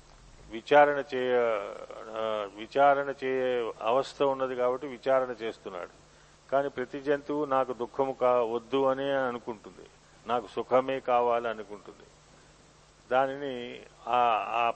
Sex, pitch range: male, 120-145 Hz